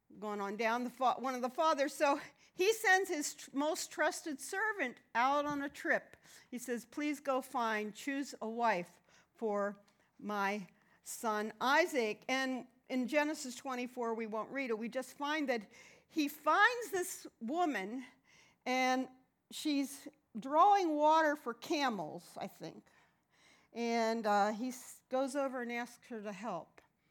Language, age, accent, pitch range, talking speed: English, 50-69, American, 210-290 Hz, 150 wpm